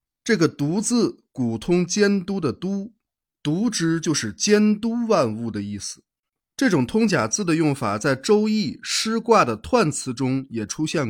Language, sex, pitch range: Chinese, male, 130-210 Hz